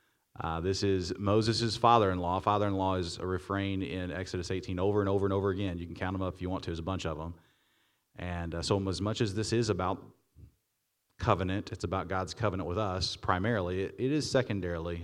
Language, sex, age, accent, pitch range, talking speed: English, male, 40-59, American, 95-110 Hz, 210 wpm